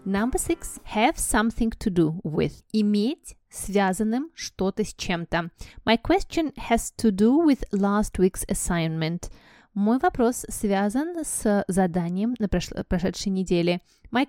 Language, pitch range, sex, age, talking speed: Russian, 190-240 Hz, female, 20-39, 125 wpm